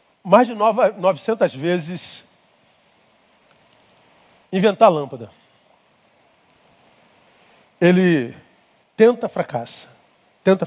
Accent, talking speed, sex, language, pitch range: Brazilian, 60 wpm, male, Portuguese, 150-210 Hz